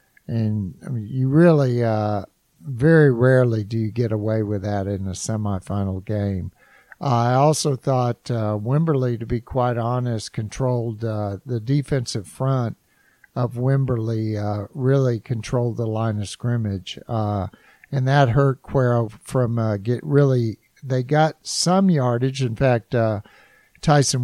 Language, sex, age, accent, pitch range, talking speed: English, male, 60-79, American, 110-135 Hz, 145 wpm